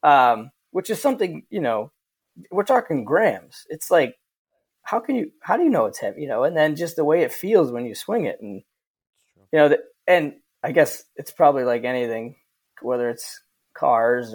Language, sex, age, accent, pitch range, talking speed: English, male, 20-39, American, 120-175 Hz, 190 wpm